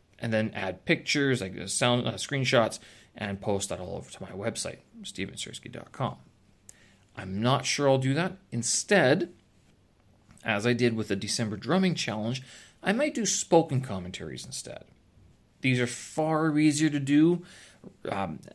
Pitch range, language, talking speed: 100-130 Hz, English, 145 wpm